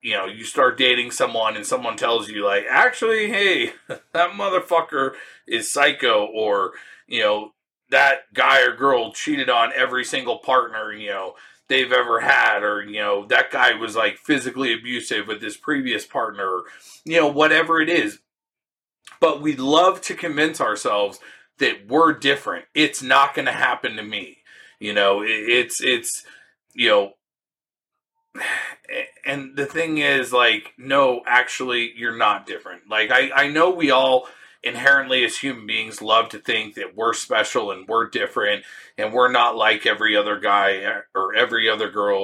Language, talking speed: English, 160 wpm